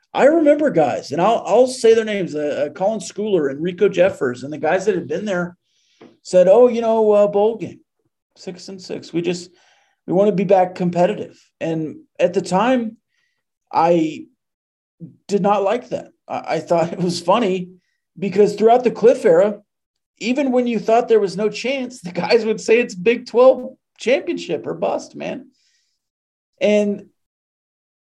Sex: male